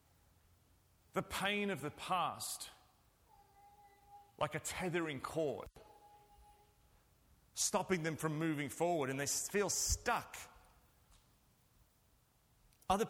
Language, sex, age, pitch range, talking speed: English, male, 30-49, 140-185 Hz, 85 wpm